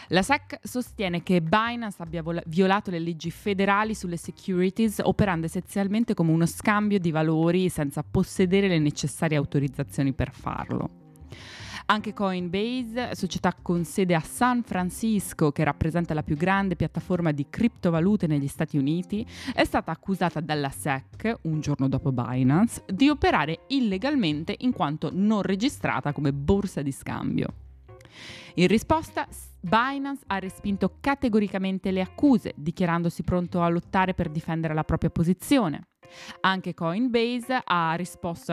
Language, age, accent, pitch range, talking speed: Italian, 20-39, native, 155-205 Hz, 135 wpm